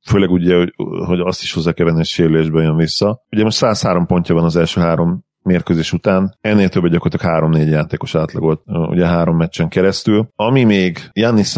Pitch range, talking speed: 80-95 Hz, 180 wpm